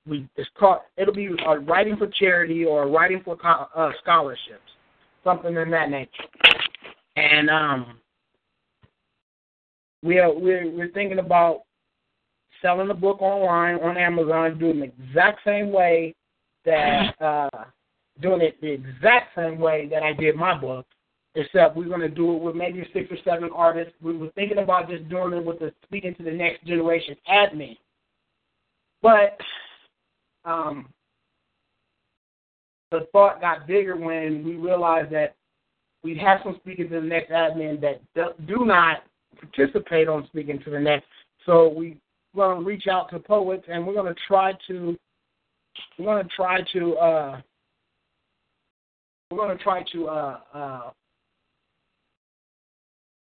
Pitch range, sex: 155-185 Hz, male